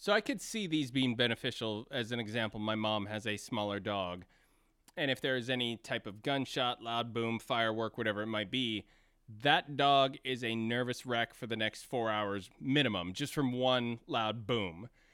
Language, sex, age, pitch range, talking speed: English, male, 30-49, 115-150 Hz, 190 wpm